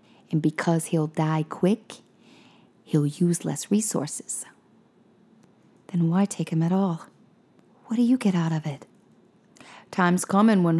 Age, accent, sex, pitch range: 40-59, American, female, 155-180 Hz